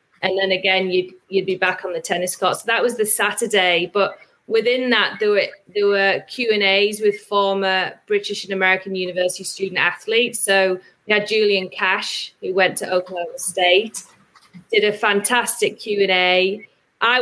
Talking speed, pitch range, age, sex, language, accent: 165 wpm, 190-215 Hz, 30-49, female, English, British